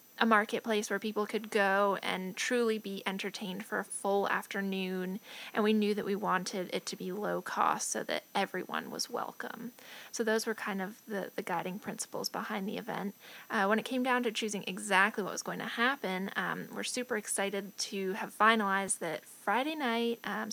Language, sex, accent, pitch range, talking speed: English, female, American, 200-230 Hz, 195 wpm